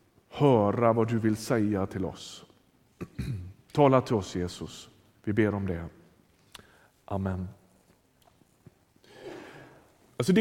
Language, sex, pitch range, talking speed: Swedish, male, 125-200 Hz, 100 wpm